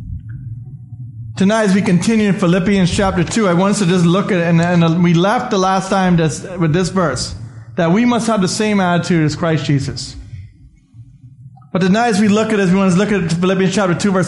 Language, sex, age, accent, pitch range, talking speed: English, male, 30-49, American, 160-210 Hz, 230 wpm